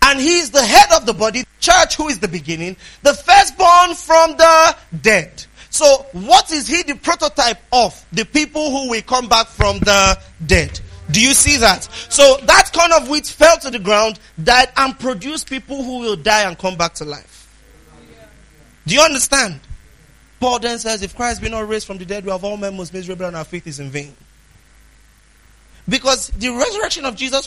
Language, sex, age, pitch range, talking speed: English, male, 30-49, 180-280 Hz, 195 wpm